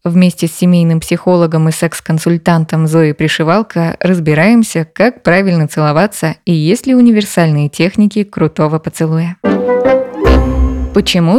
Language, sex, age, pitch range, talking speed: Russian, female, 20-39, 160-200 Hz, 105 wpm